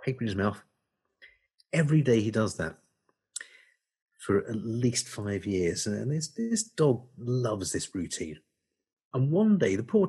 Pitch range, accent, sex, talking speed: 120-180 Hz, British, male, 155 wpm